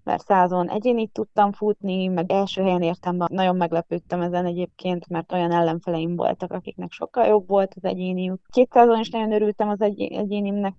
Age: 20-39